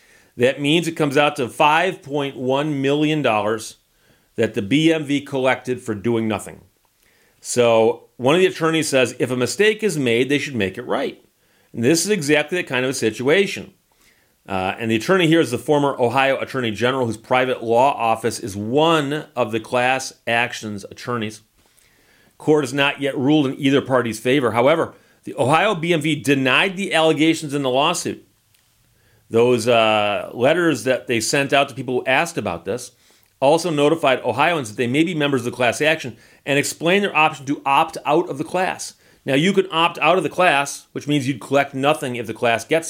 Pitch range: 115-150 Hz